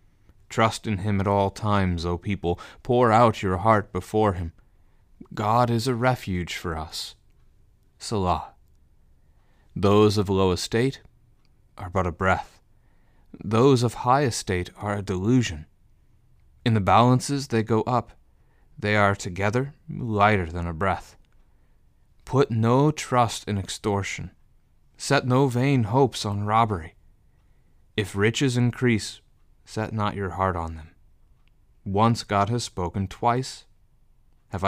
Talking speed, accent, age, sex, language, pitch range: 130 wpm, American, 30-49, male, English, 90-120 Hz